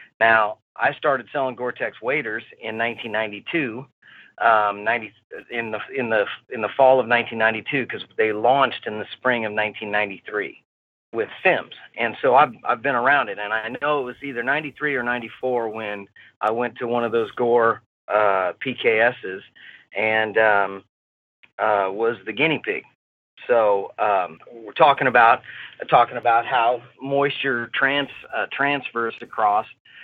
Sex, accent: male, American